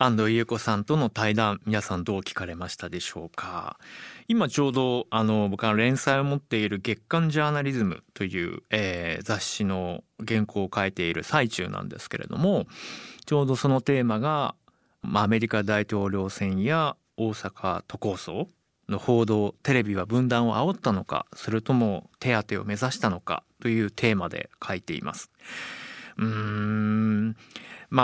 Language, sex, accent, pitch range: Japanese, male, native, 105-135 Hz